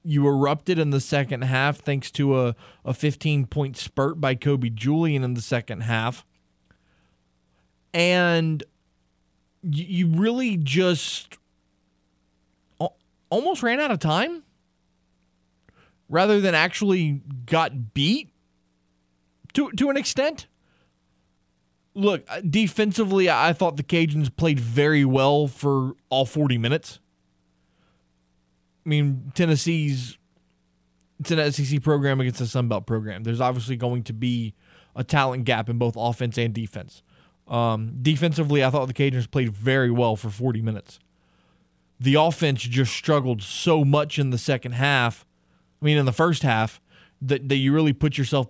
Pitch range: 105-150 Hz